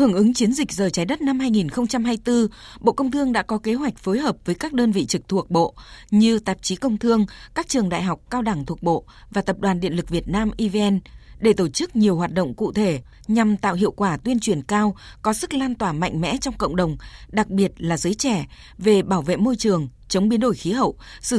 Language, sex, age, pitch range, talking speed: Vietnamese, female, 20-39, 190-240 Hz, 240 wpm